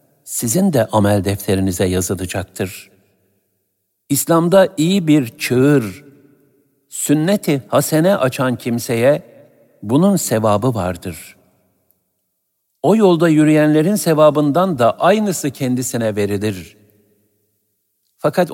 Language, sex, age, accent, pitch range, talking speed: Turkish, male, 60-79, native, 100-145 Hz, 80 wpm